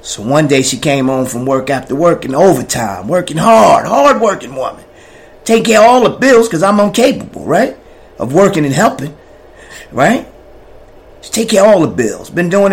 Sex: male